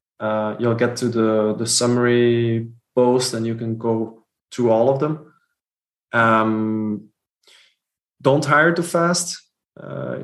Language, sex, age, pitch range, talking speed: English, male, 20-39, 115-130 Hz, 130 wpm